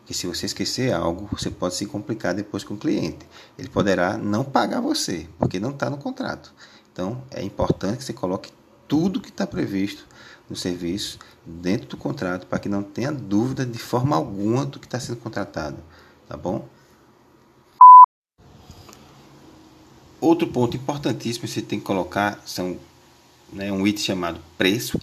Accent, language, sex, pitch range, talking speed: Brazilian, Portuguese, male, 95-130 Hz, 160 wpm